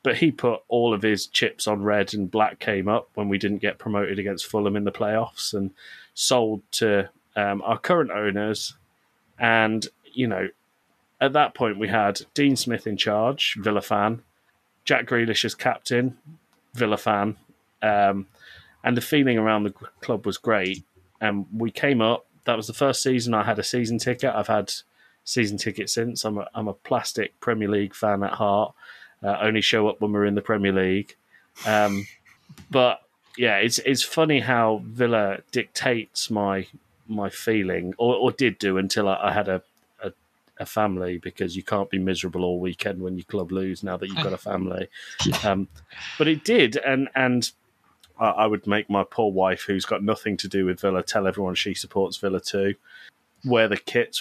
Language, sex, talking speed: English, male, 185 wpm